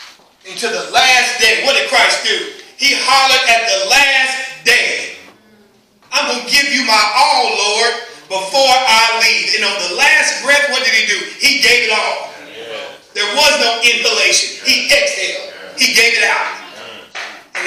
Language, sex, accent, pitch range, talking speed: English, male, American, 210-280 Hz, 165 wpm